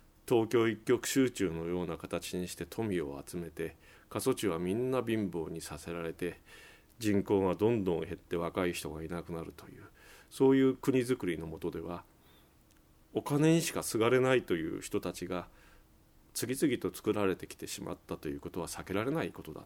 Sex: male